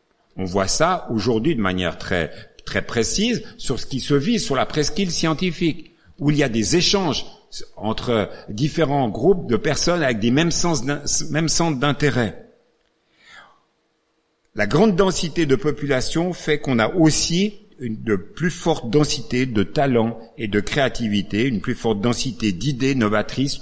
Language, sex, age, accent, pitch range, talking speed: French, male, 60-79, French, 110-170 Hz, 155 wpm